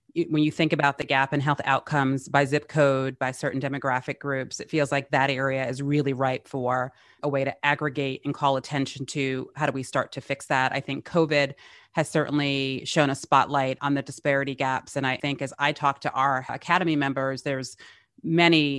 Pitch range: 135-150 Hz